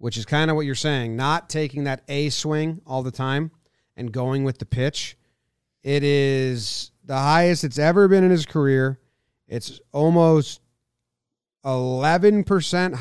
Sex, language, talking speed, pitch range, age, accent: male, English, 150 wpm, 115-155 Hz, 30-49, American